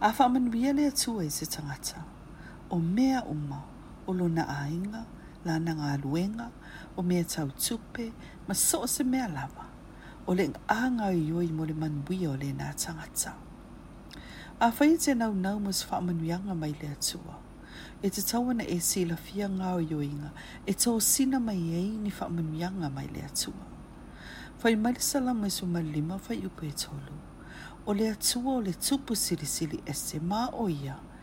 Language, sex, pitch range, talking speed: English, female, 160-230 Hz, 175 wpm